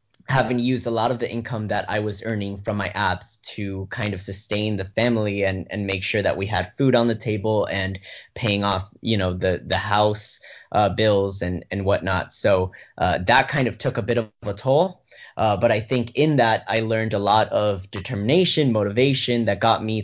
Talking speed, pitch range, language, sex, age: 215 wpm, 100-115 Hz, English, male, 10-29